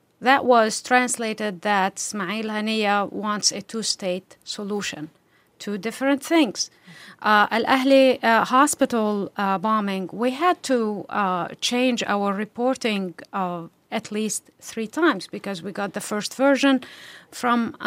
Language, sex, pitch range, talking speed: English, female, 210-255 Hz, 130 wpm